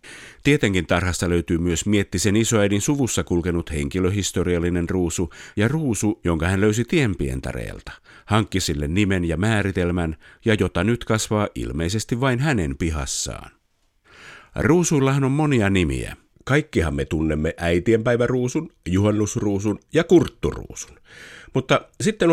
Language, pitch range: Finnish, 85-120 Hz